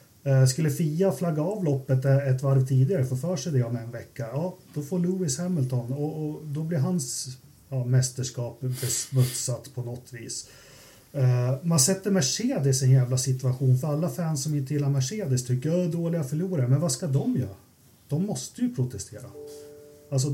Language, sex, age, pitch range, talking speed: Swedish, male, 30-49, 125-145 Hz, 175 wpm